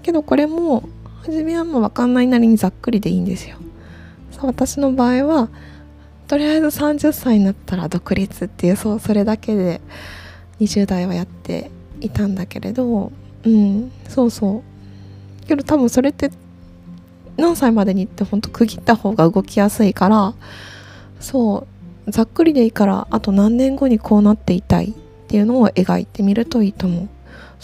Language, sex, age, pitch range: Japanese, female, 20-39, 175-230 Hz